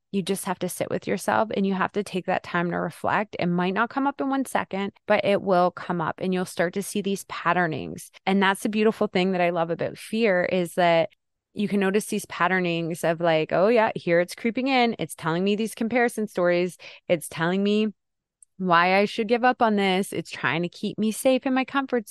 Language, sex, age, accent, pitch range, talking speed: English, female, 20-39, American, 175-215 Hz, 235 wpm